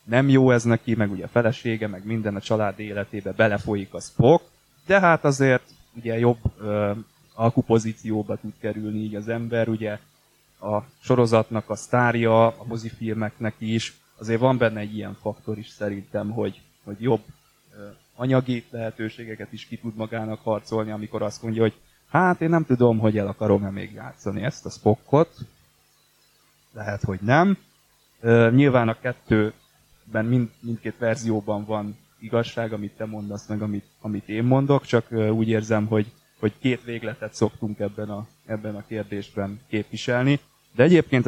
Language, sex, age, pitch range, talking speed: Hungarian, male, 20-39, 105-120 Hz, 155 wpm